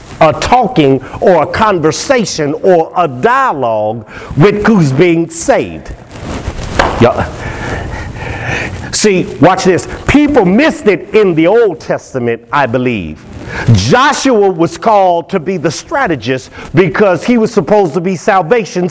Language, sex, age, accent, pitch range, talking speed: English, male, 50-69, American, 150-240 Hz, 125 wpm